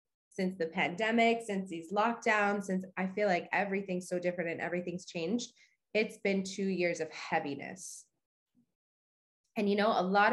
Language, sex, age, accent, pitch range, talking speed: English, female, 20-39, American, 185-245 Hz, 155 wpm